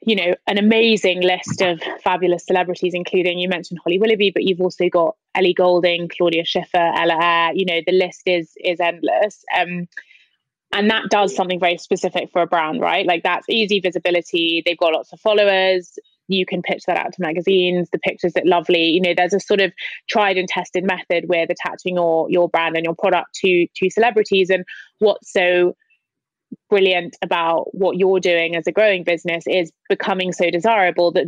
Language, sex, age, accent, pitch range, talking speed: English, female, 20-39, British, 175-195 Hz, 190 wpm